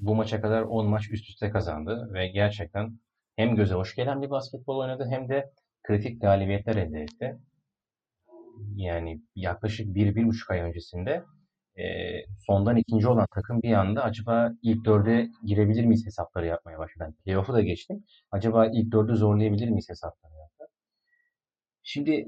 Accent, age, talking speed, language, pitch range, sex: native, 30-49, 150 wpm, Turkish, 95-115 Hz, male